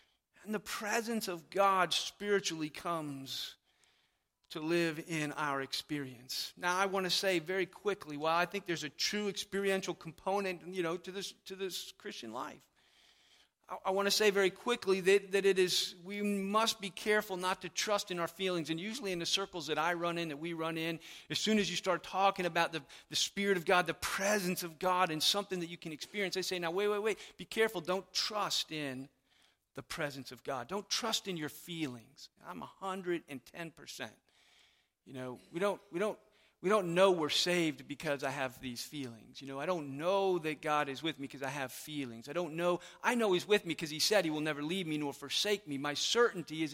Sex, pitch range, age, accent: male, 155-195 Hz, 40-59, American